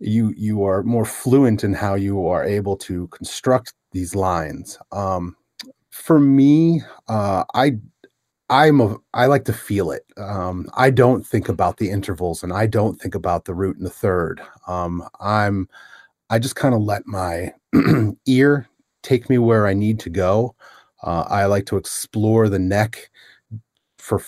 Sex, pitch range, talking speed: male, 95-120 Hz, 160 wpm